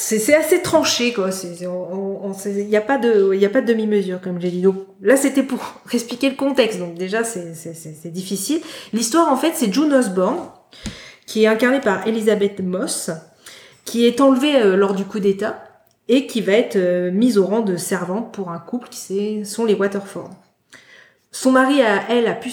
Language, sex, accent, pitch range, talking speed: French, female, French, 185-235 Hz, 215 wpm